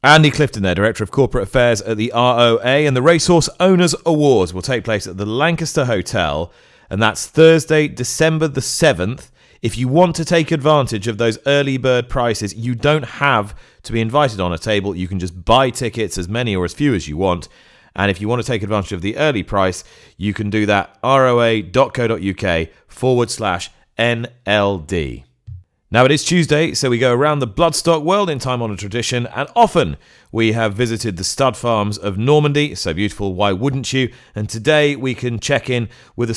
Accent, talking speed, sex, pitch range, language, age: British, 200 wpm, male, 105-135 Hz, English, 30-49